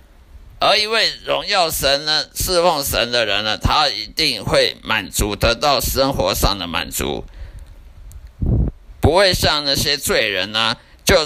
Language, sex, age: Chinese, male, 50-69